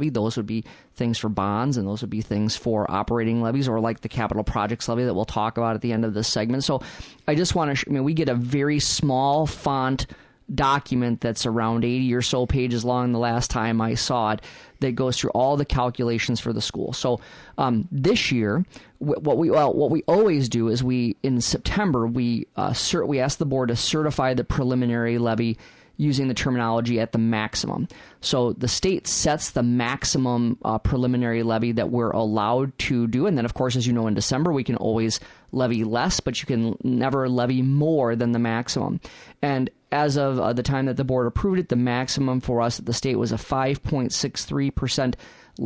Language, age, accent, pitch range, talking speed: English, 30-49, American, 115-135 Hz, 205 wpm